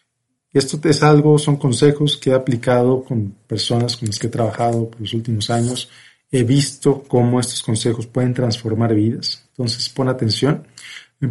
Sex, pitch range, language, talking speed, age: male, 115-140 Hz, Spanish, 165 wpm, 40-59